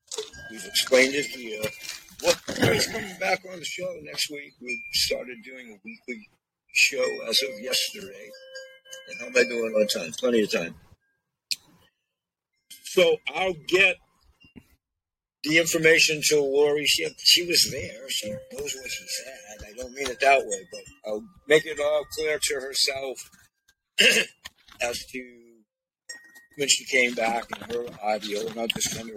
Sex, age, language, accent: male, 50-69, Chinese, American